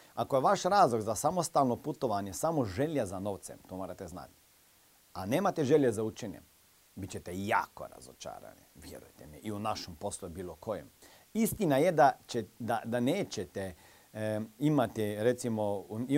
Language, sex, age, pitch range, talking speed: Croatian, male, 40-59, 100-140 Hz, 160 wpm